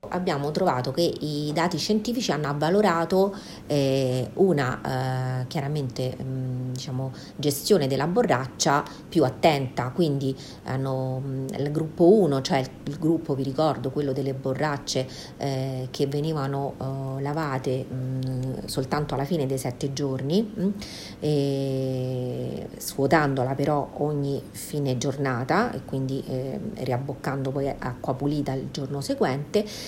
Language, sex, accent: Italian, female, native